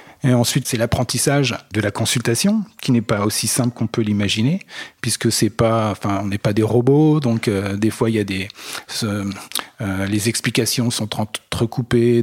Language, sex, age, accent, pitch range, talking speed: French, male, 40-59, French, 105-125 Hz, 180 wpm